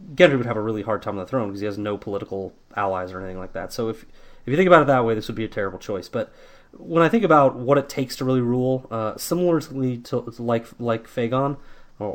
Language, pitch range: English, 105-130 Hz